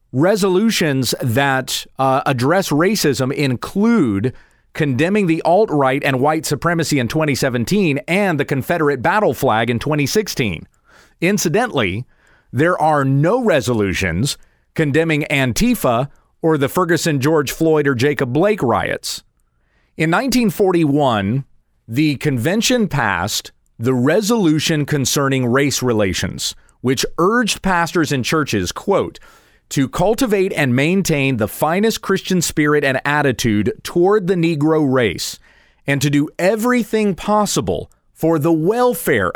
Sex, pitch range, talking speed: male, 135-185 Hz, 115 wpm